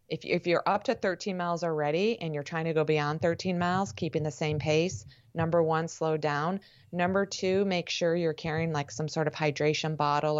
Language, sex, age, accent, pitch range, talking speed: English, female, 30-49, American, 145-165 Hz, 200 wpm